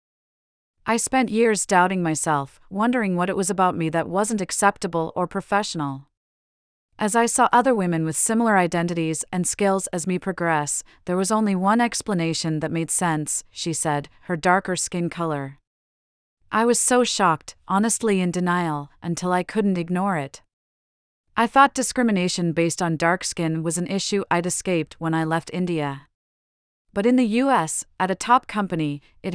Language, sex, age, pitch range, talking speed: English, female, 40-59, 165-205 Hz, 165 wpm